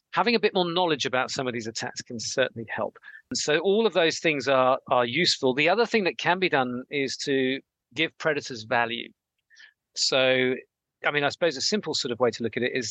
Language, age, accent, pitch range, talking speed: English, 50-69, British, 125-165 Hz, 230 wpm